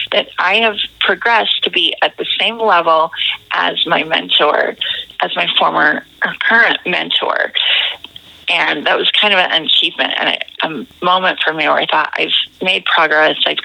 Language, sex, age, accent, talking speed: English, female, 30-49, American, 165 wpm